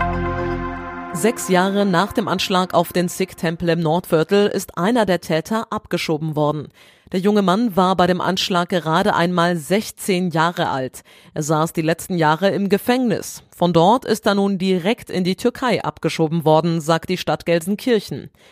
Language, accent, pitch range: German, German, 160-200 Hz